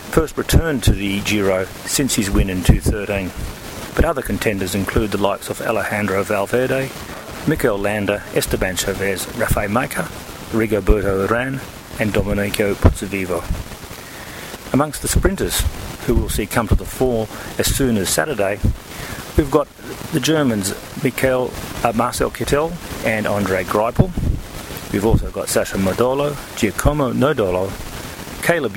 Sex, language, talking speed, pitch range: male, English, 130 wpm, 100-120 Hz